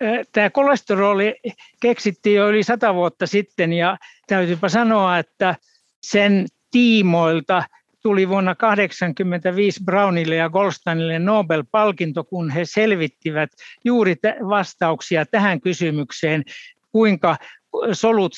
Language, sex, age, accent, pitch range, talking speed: Finnish, male, 60-79, native, 170-215 Hz, 100 wpm